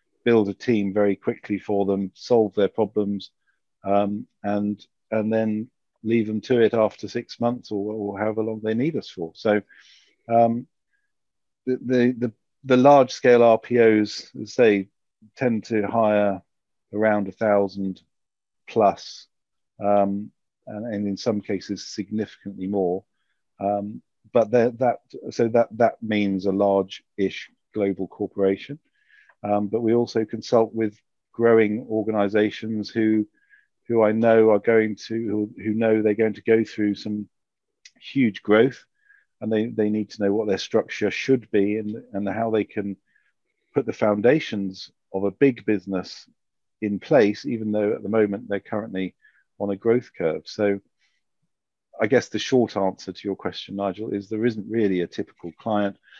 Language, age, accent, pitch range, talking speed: English, 50-69, British, 100-115 Hz, 155 wpm